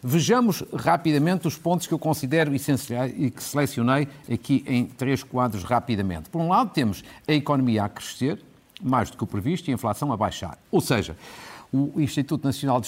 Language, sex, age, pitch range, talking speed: Portuguese, male, 50-69, 120-170 Hz, 185 wpm